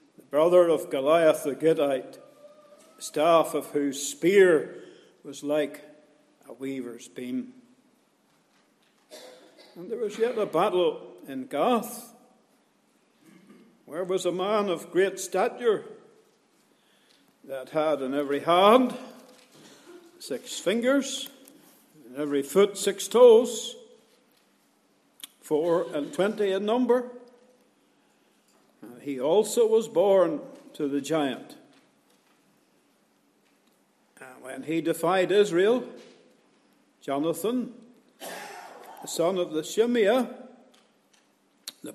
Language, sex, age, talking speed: English, male, 60-79, 95 wpm